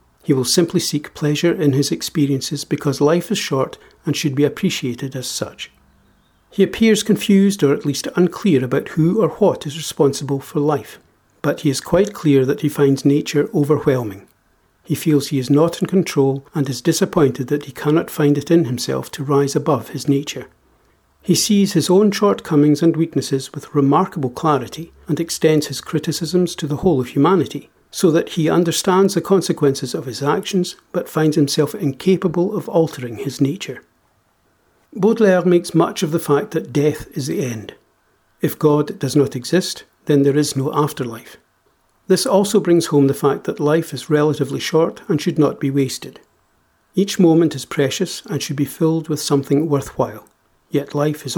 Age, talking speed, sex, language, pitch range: 60-79, 180 wpm, male, English, 140-170 Hz